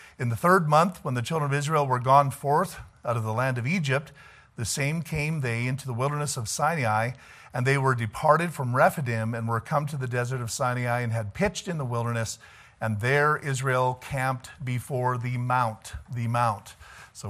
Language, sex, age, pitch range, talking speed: English, male, 50-69, 115-135 Hz, 200 wpm